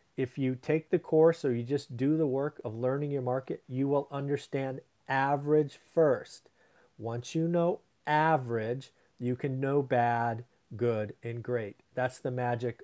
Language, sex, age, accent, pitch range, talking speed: English, male, 40-59, American, 125-160 Hz, 160 wpm